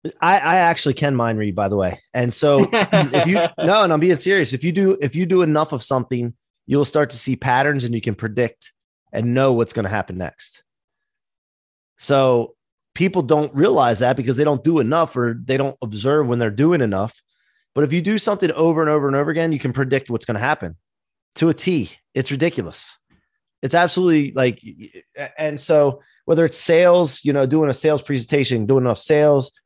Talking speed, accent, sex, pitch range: 205 wpm, American, male, 120-155 Hz